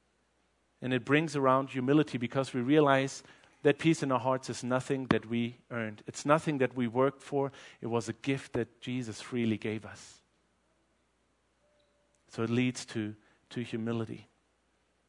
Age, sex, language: 40-59, male, English